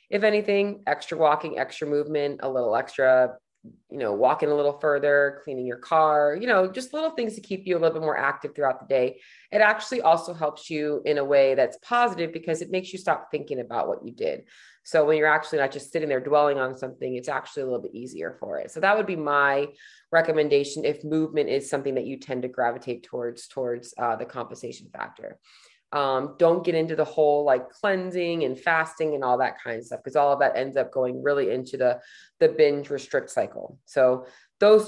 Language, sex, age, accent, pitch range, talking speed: English, female, 30-49, American, 140-185 Hz, 215 wpm